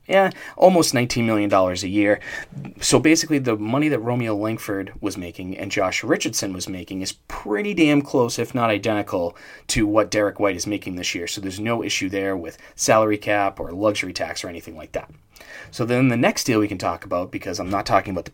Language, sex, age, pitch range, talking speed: English, male, 30-49, 95-120 Hz, 215 wpm